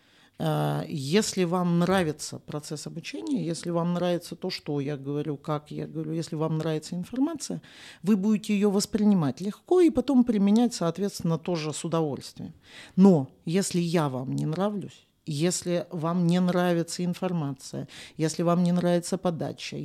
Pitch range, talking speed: 160-200 Hz, 140 wpm